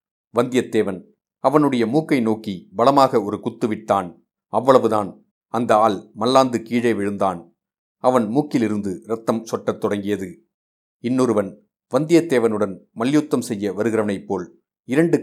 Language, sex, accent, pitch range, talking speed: Tamil, male, native, 105-125 Hz, 100 wpm